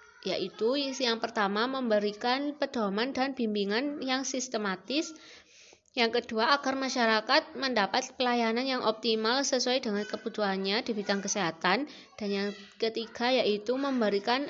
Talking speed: 115 wpm